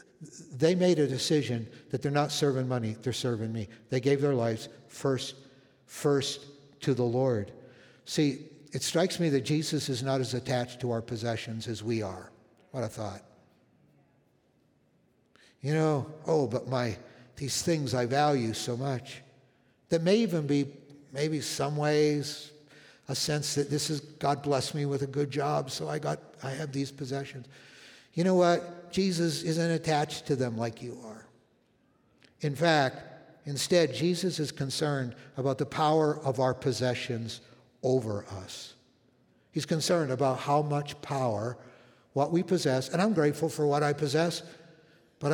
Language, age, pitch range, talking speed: English, 60-79, 125-155 Hz, 160 wpm